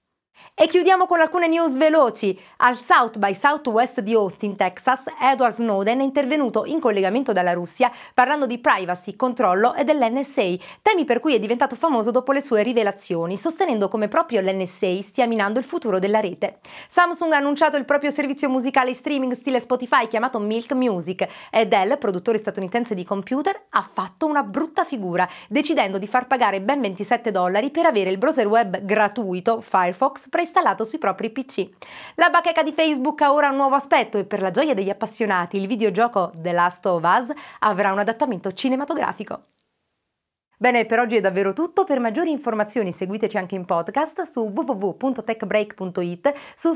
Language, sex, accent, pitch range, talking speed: Italian, female, native, 200-285 Hz, 170 wpm